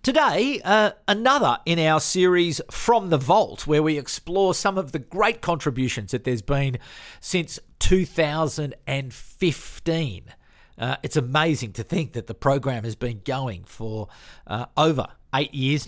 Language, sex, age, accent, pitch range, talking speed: English, male, 40-59, Australian, 125-170 Hz, 145 wpm